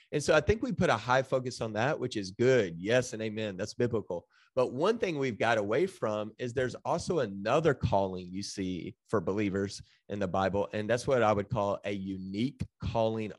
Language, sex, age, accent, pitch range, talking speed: English, male, 30-49, American, 105-130 Hz, 210 wpm